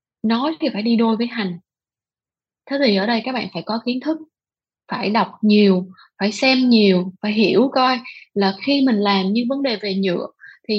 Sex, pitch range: female, 200-265 Hz